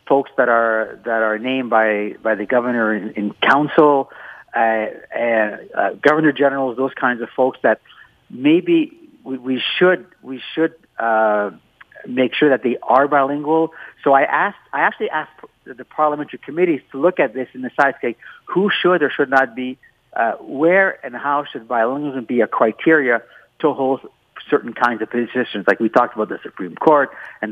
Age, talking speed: 50-69, 180 wpm